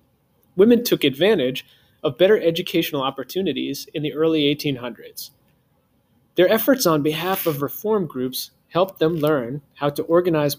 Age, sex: 30-49, male